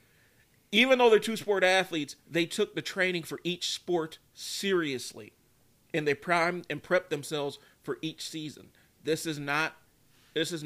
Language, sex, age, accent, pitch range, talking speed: English, male, 40-59, American, 130-155 Hz, 150 wpm